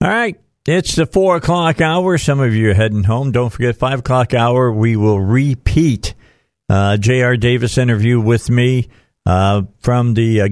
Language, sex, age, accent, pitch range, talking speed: English, male, 50-69, American, 95-125 Hz, 175 wpm